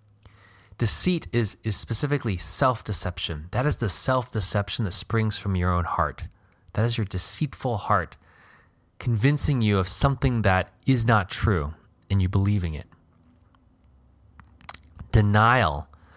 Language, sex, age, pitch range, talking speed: English, male, 20-39, 90-120 Hz, 125 wpm